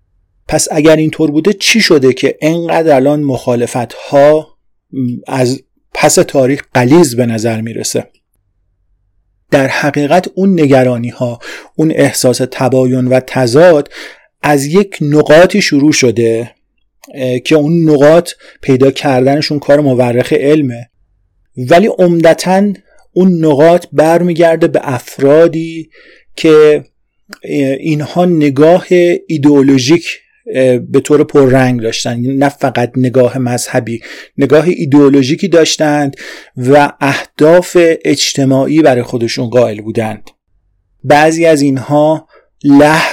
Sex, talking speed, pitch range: male, 105 wpm, 125-155 Hz